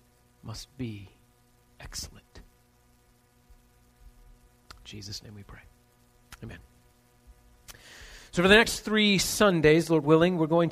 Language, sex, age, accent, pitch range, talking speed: English, male, 40-59, American, 120-180 Hz, 105 wpm